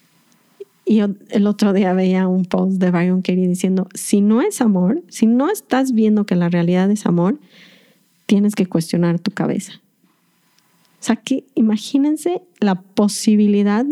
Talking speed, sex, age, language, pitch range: 150 wpm, female, 30-49, Spanish, 195-235 Hz